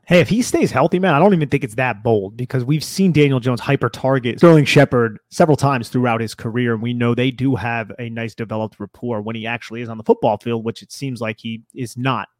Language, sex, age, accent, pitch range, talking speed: English, male, 30-49, American, 120-150 Hz, 250 wpm